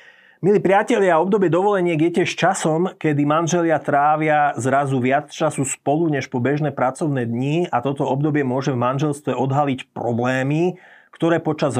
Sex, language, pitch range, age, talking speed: male, Slovak, 125-160 Hz, 30-49, 145 wpm